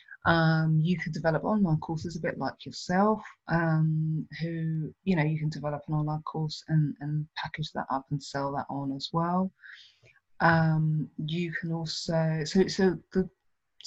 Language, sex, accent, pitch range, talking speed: English, female, British, 150-165 Hz, 165 wpm